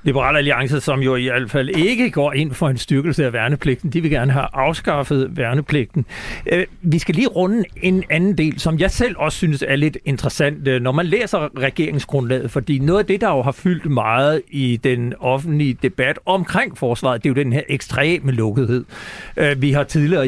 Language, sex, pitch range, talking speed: Danish, male, 135-170 Hz, 190 wpm